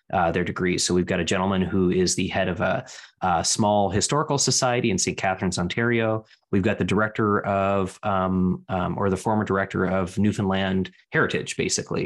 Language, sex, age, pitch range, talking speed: English, male, 20-39, 95-110 Hz, 185 wpm